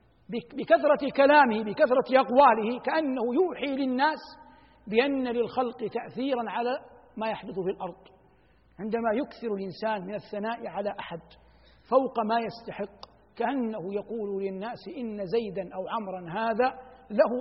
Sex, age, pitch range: male, 60-79, 205-275 Hz